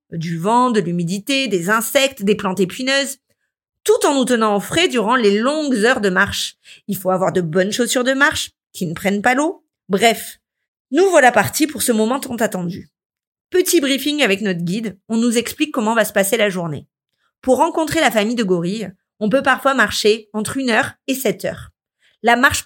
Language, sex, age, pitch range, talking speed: French, female, 40-59, 190-245 Hz, 195 wpm